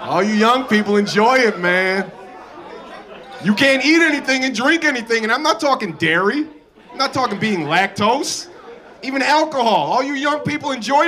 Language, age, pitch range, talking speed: English, 30-49, 210-285 Hz, 170 wpm